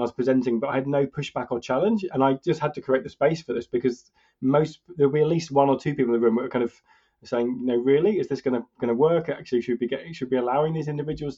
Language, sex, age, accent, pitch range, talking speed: English, male, 30-49, British, 115-135 Hz, 290 wpm